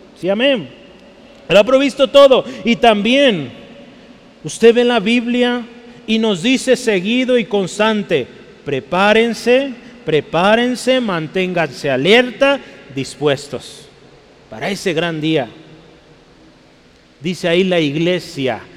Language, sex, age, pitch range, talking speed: Spanish, male, 40-59, 165-235 Hz, 95 wpm